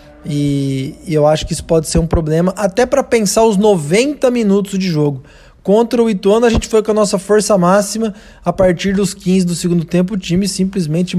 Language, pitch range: Portuguese, 165-205 Hz